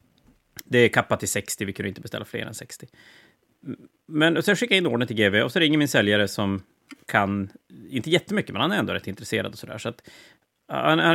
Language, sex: Swedish, male